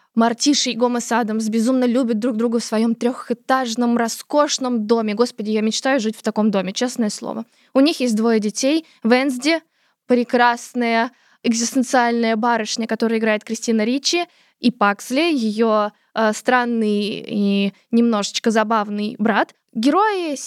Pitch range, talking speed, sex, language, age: 225-280 Hz, 130 wpm, female, Russian, 20-39